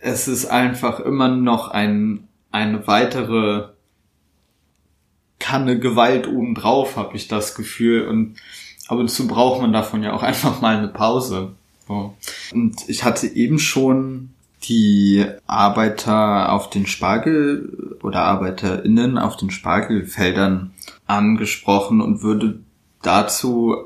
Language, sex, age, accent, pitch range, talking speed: German, male, 20-39, German, 100-125 Hz, 120 wpm